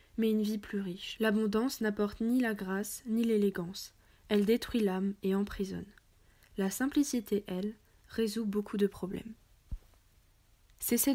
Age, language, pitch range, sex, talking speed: 20-39, French, 200-230 Hz, female, 135 wpm